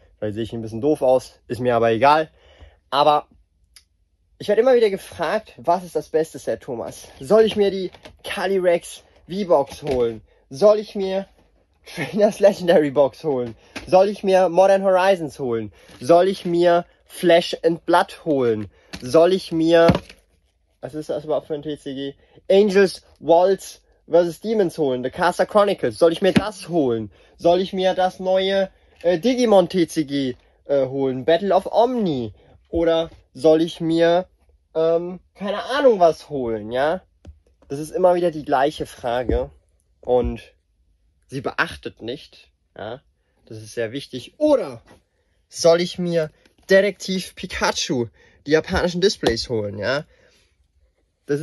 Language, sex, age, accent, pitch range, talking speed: German, male, 20-39, German, 120-185 Hz, 145 wpm